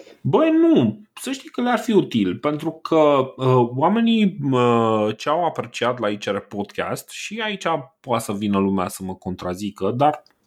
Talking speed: 160 wpm